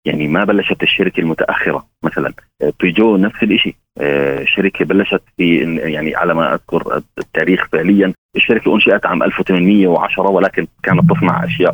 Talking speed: 135 wpm